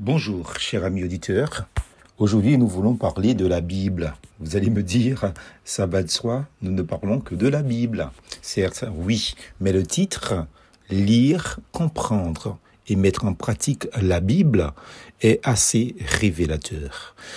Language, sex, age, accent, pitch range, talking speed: French, male, 50-69, French, 95-125 Hz, 145 wpm